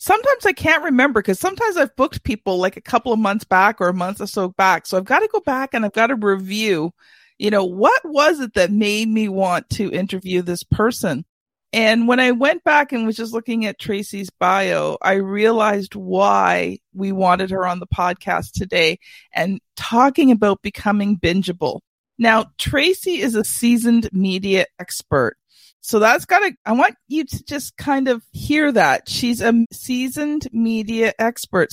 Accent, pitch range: American, 200-270 Hz